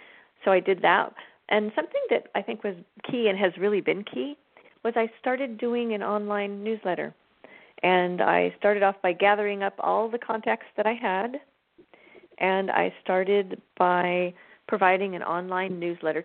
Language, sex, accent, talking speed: English, female, American, 165 wpm